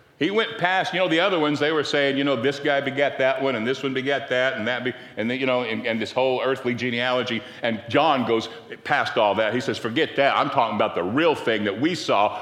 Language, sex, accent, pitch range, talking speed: English, male, American, 120-145 Hz, 265 wpm